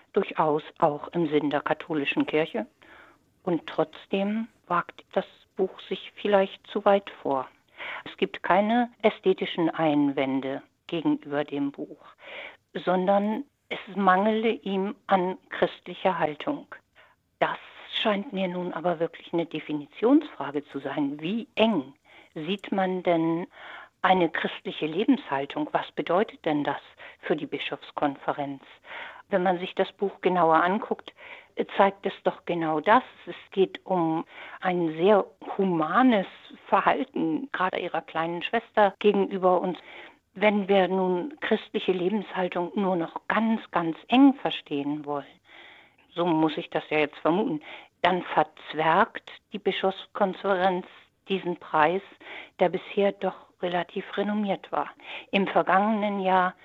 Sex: female